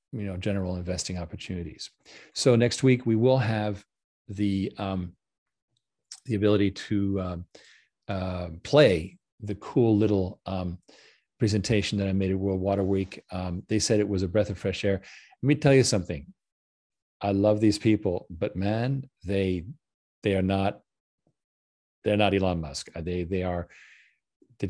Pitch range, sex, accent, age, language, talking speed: 95-105 Hz, male, American, 40-59, English, 155 wpm